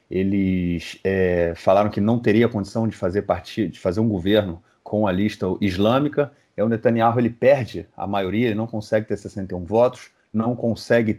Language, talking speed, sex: Portuguese, 175 wpm, male